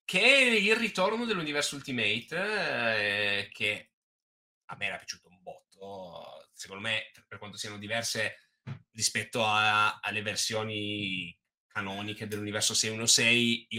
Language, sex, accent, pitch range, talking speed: Italian, male, native, 110-140 Hz, 120 wpm